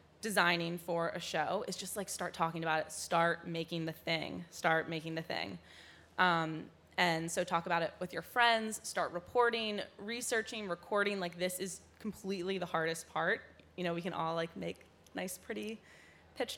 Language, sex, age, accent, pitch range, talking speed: English, female, 20-39, American, 165-190 Hz, 175 wpm